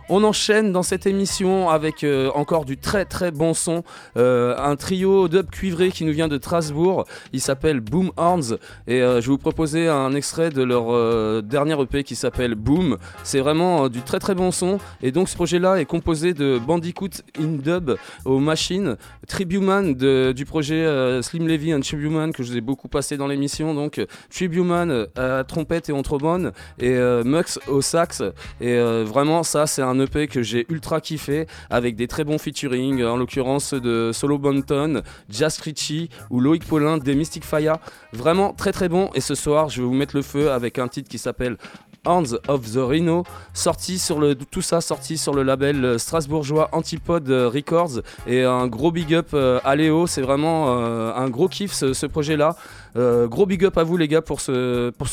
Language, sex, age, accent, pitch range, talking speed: French, male, 20-39, French, 130-170 Hz, 195 wpm